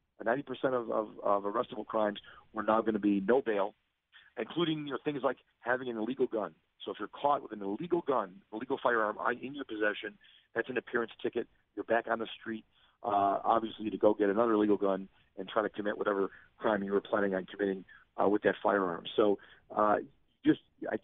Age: 40-59